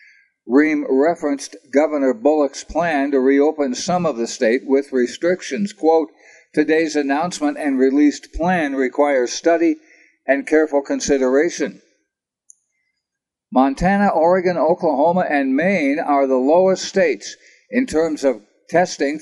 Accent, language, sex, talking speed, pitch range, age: American, English, male, 115 wpm, 135-190 Hz, 60-79